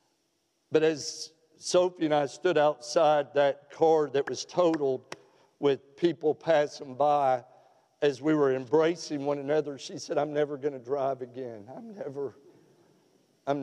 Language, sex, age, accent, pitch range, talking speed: English, male, 50-69, American, 135-160 Hz, 145 wpm